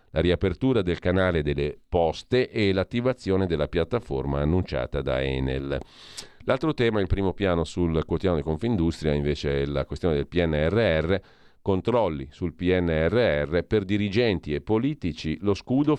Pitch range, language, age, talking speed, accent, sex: 80-105 Hz, Italian, 40-59, 140 wpm, native, male